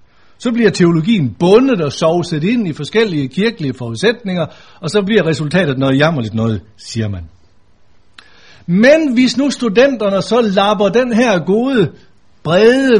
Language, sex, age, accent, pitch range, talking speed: Danish, male, 60-79, native, 145-225 Hz, 140 wpm